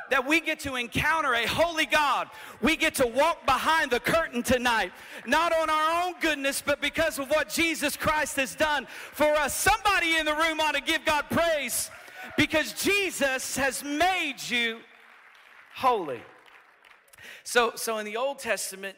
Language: English